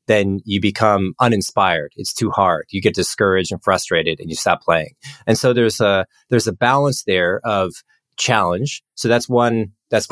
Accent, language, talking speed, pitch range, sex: American, English, 180 wpm, 95-125 Hz, male